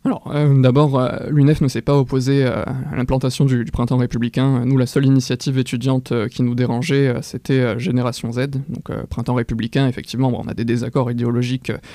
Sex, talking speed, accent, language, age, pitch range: male, 175 wpm, French, French, 20-39, 120-135 Hz